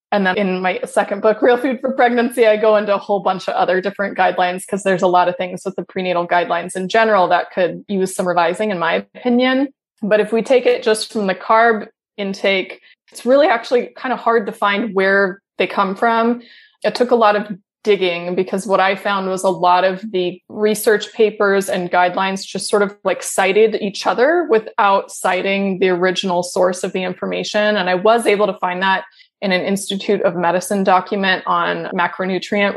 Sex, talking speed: female, 205 wpm